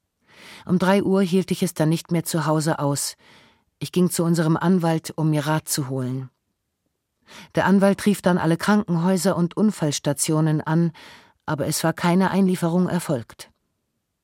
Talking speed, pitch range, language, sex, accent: 155 wpm, 155-180 Hz, German, female, German